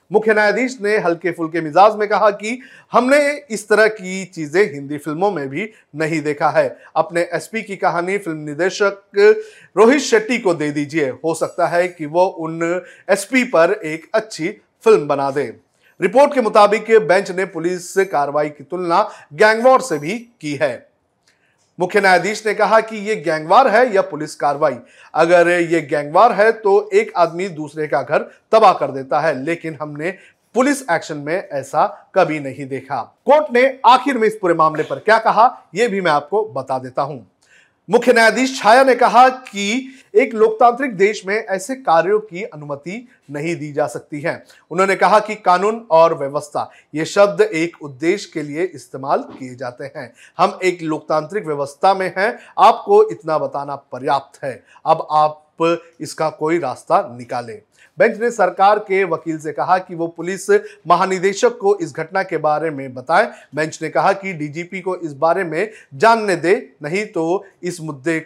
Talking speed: 170 wpm